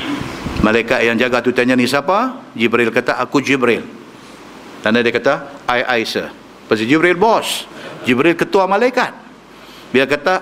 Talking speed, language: 145 wpm, Malay